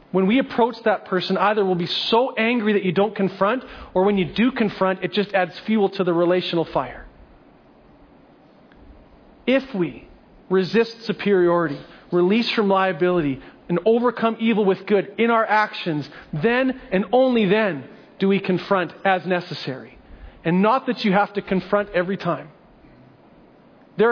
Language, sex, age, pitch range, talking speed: English, male, 40-59, 180-225 Hz, 150 wpm